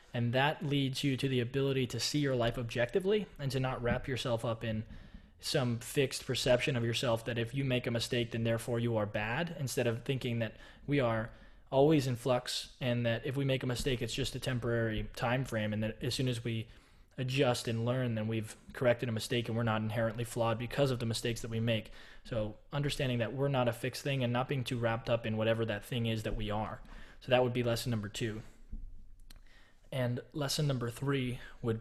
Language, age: English, 20-39